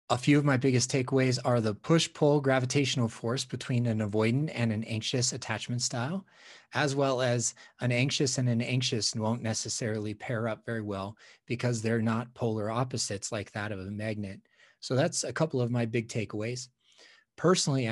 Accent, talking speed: American, 175 wpm